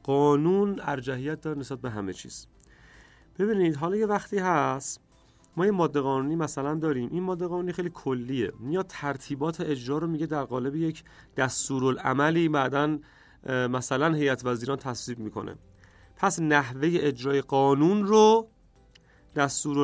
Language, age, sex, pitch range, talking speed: Persian, 30-49, male, 130-160 Hz, 135 wpm